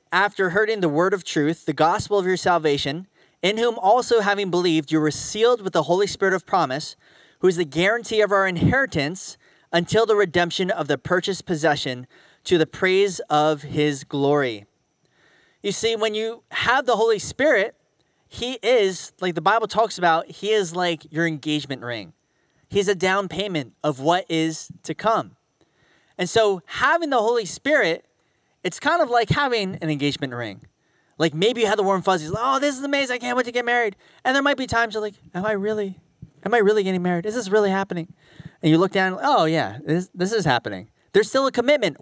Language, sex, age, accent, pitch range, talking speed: English, male, 30-49, American, 160-225 Hz, 200 wpm